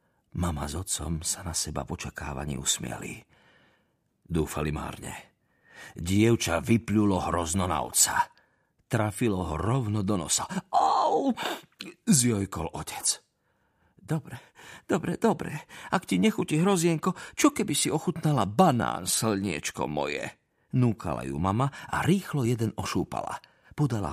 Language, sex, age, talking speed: Slovak, male, 50-69, 110 wpm